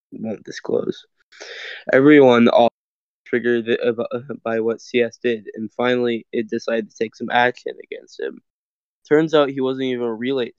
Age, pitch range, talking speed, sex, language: 10-29, 115-130 Hz, 145 wpm, male, English